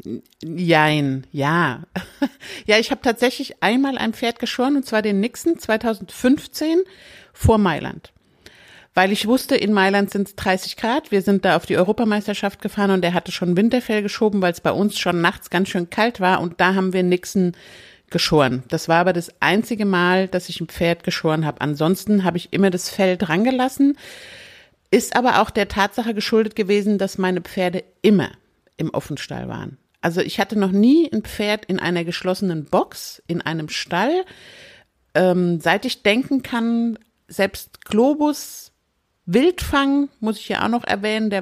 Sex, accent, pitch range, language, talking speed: female, German, 180-240 Hz, German, 170 wpm